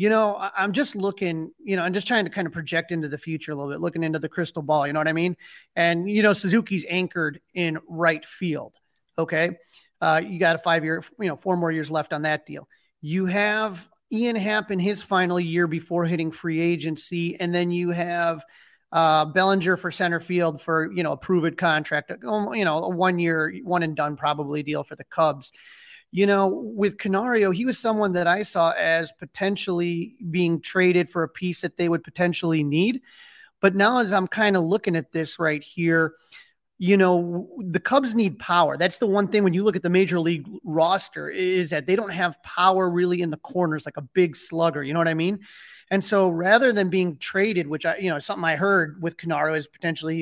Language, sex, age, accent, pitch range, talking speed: English, male, 30-49, American, 165-195 Hz, 215 wpm